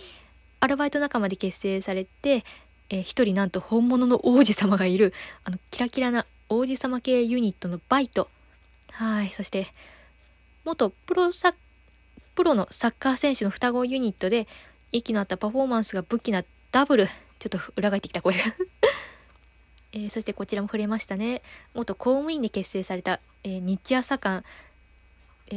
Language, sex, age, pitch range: Japanese, female, 20-39, 195-260 Hz